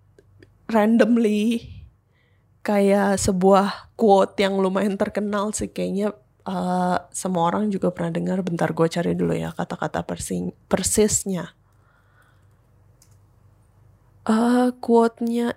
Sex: female